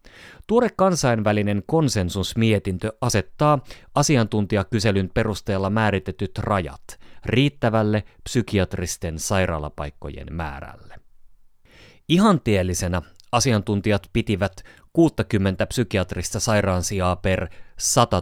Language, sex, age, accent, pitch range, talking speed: Finnish, male, 30-49, native, 90-115 Hz, 70 wpm